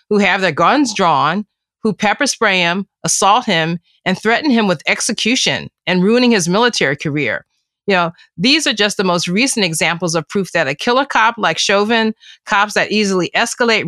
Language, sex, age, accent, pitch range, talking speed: English, female, 30-49, American, 170-215 Hz, 180 wpm